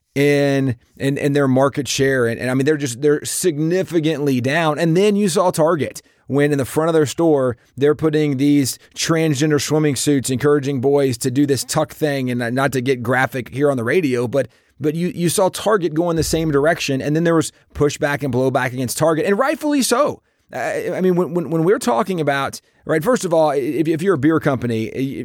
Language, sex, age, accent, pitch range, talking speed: English, male, 30-49, American, 140-190 Hz, 210 wpm